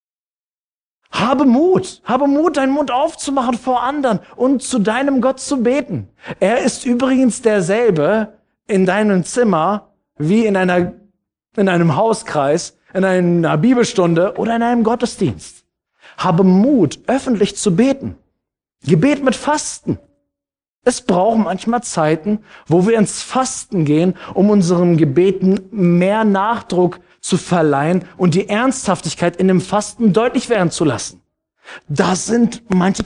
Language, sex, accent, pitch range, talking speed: German, male, German, 180-240 Hz, 130 wpm